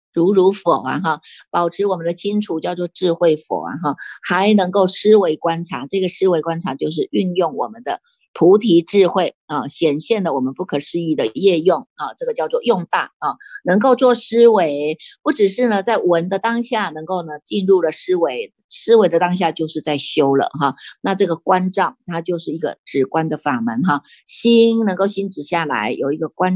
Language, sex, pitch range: Chinese, female, 165-220 Hz